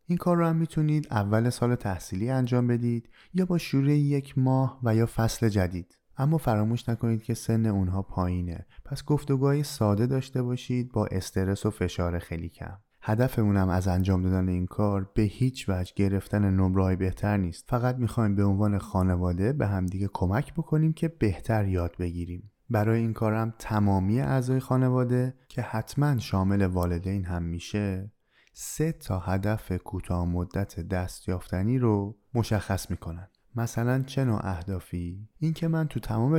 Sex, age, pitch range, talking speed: male, 20-39, 95-130 Hz, 155 wpm